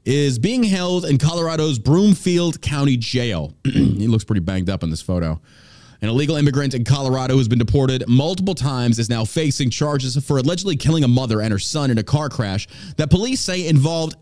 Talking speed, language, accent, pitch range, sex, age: 200 wpm, English, American, 110-150 Hz, male, 30-49